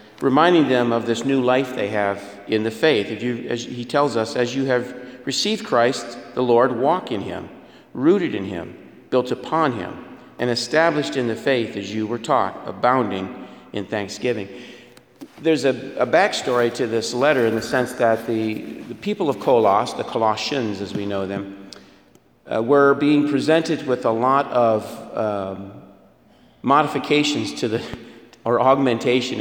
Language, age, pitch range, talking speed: English, 50-69, 110-130 Hz, 165 wpm